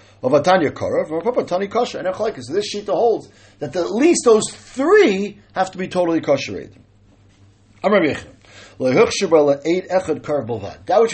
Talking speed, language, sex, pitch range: 85 wpm, English, male, 145-225 Hz